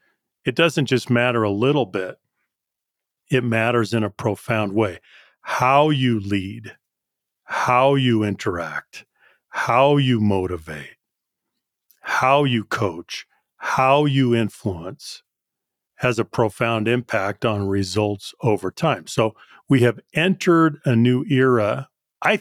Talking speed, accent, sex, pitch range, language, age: 120 wpm, American, male, 115-140 Hz, English, 40-59